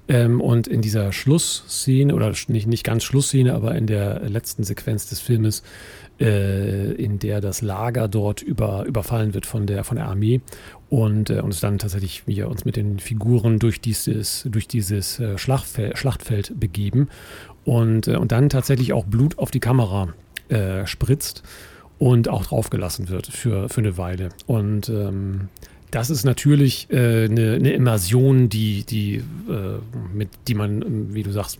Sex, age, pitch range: male, 40-59, 105-130 Hz